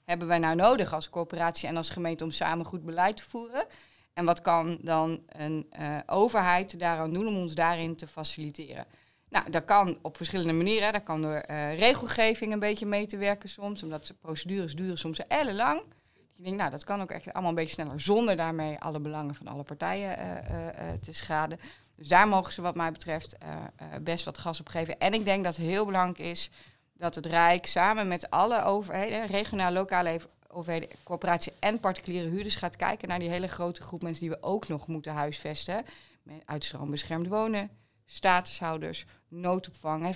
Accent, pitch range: Dutch, 160-190 Hz